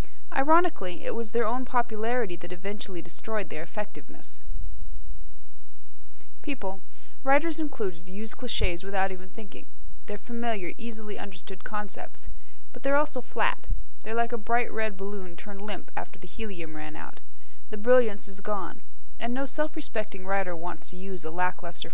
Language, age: English, 20-39